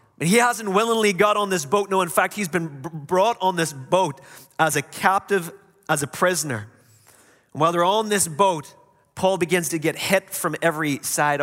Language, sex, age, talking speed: English, male, 30-49, 195 wpm